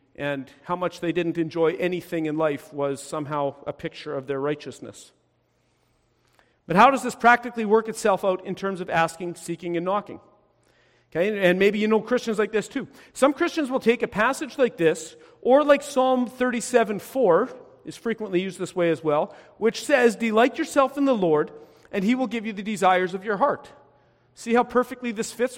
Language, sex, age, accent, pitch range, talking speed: English, male, 40-59, American, 160-235 Hz, 190 wpm